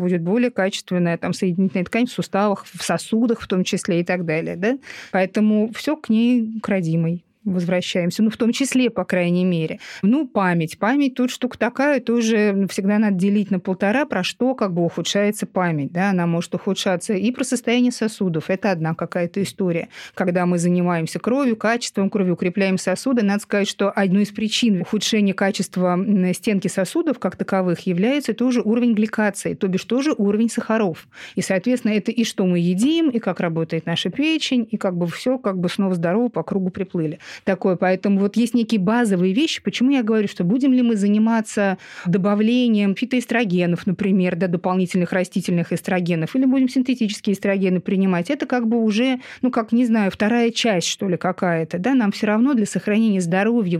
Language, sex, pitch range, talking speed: Russian, female, 185-235 Hz, 175 wpm